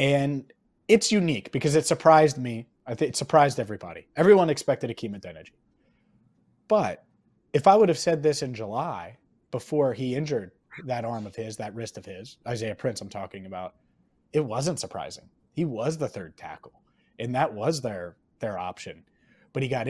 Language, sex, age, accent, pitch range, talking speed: English, male, 30-49, American, 115-140 Hz, 170 wpm